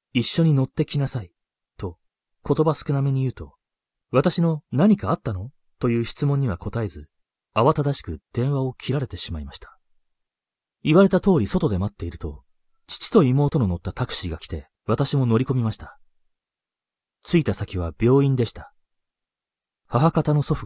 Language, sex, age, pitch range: Japanese, male, 30-49, 90-145 Hz